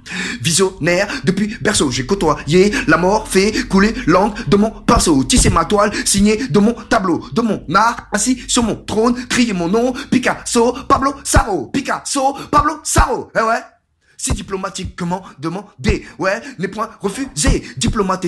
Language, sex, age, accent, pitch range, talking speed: French, male, 30-49, French, 180-240 Hz, 150 wpm